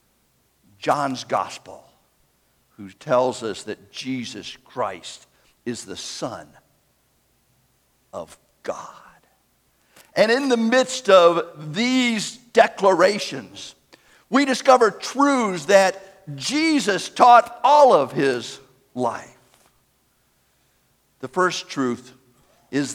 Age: 60-79